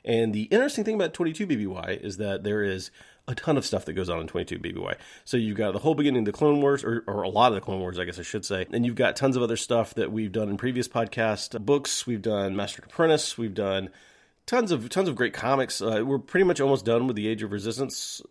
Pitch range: 105-130 Hz